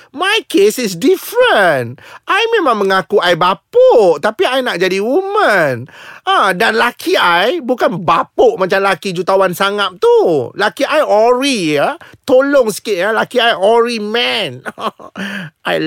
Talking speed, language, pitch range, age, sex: 145 wpm, Malay, 185-295 Hz, 30-49, male